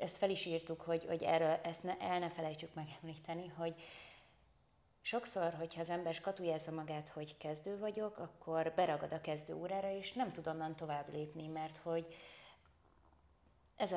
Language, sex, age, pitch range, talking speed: Hungarian, female, 30-49, 155-185 Hz, 155 wpm